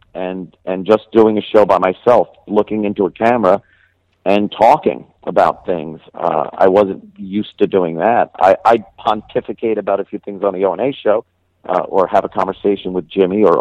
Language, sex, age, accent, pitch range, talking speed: English, male, 50-69, American, 90-100 Hz, 190 wpm